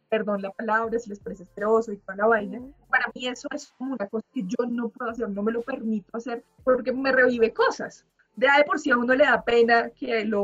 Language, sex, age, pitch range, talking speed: Spanish, female, 20-39, 220-260 Hz, 240 wpm